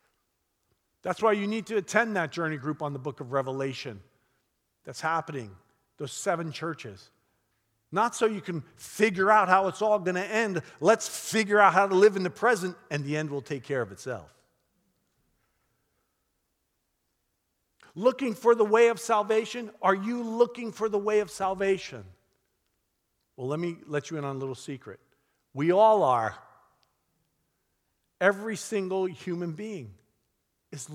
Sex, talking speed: male, 155 wpm